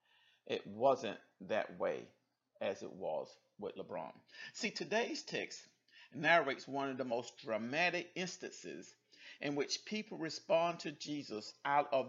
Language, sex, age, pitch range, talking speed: English, male, 50-69, 120-185 Hz, 135 wpm